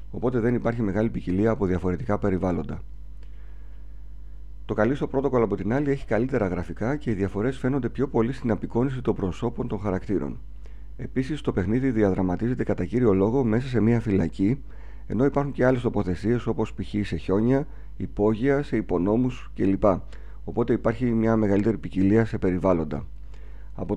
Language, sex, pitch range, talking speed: Greek, male, 90-115 Hz, 155 wpm